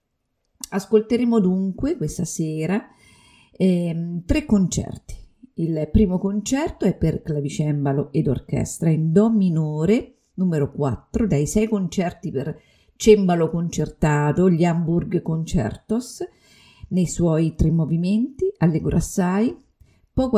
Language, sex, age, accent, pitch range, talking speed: Italian, female, 50-69, native, 160-210 Hz, 105 wpm